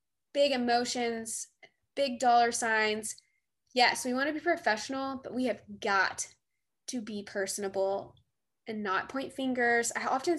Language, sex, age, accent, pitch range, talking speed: English, female, 20-39, American, 210-260 Hz, 135 wpm